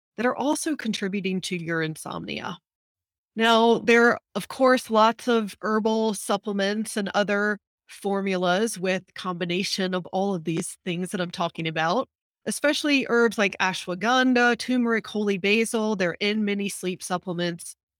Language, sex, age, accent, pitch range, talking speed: English, female, 30-49, American, 185-235 Hz, 140 wpm